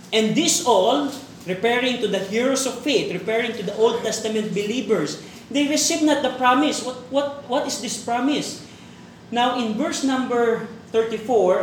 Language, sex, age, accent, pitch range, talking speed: Filipino, male, 20-39, native, 205-260 Hz, 160 wpm